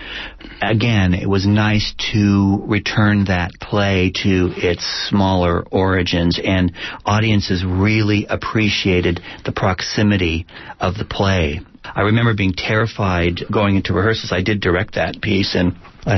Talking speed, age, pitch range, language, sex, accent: 130 wpm, 40-59, 90-105 Hz, English, male, American